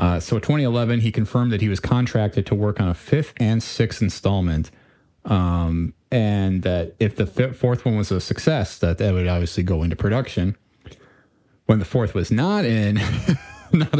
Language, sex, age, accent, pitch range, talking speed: English, male, 30-49, American, 90-120 Hz, 180 wpm